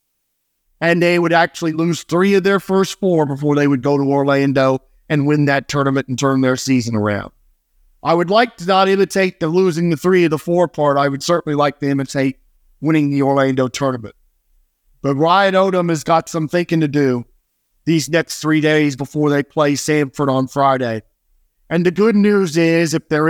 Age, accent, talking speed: 40-59, American, 195 wpm